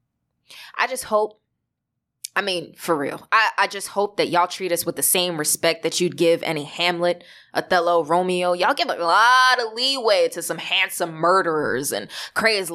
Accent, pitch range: American, 170-250 Hz